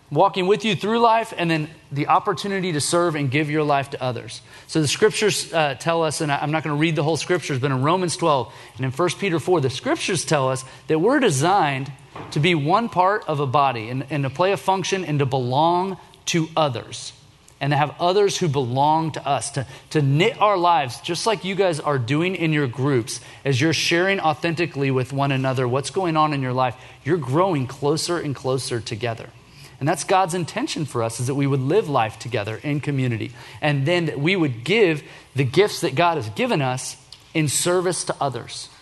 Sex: male